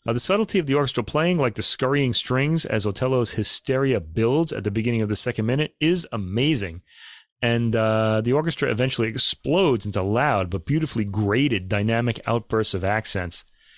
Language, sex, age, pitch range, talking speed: English, male, 30-49, 105-130 Hz, 170 wpm